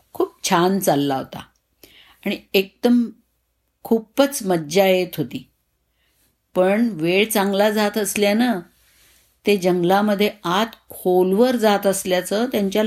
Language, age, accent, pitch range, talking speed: Marathi, 50-69, native, 165-220 Hz, 100 wpm